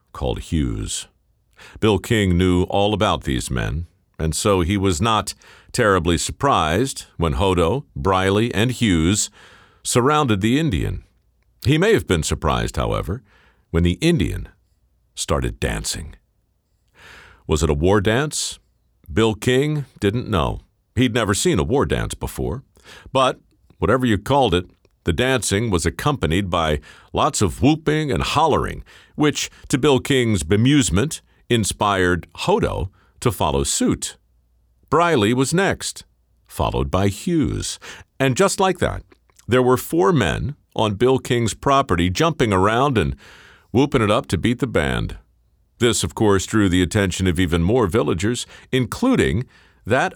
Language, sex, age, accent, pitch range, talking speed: English, male, 50-69, American, 90-125 Hz, 140 wpm